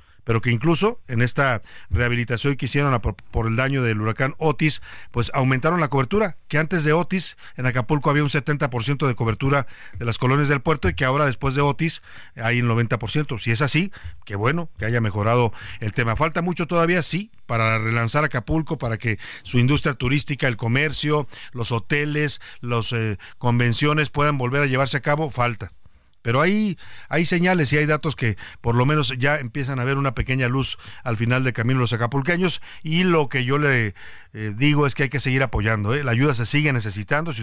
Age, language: 50-69, Spanish